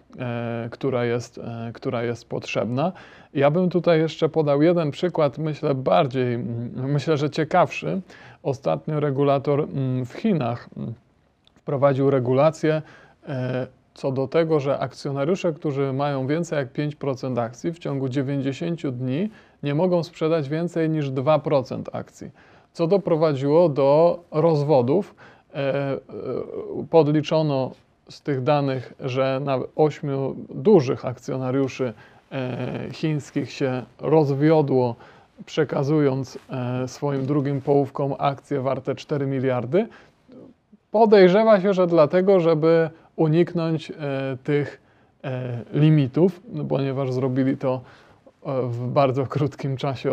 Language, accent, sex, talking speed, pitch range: Polish, native, male, 100 wpm, 130-160 Hz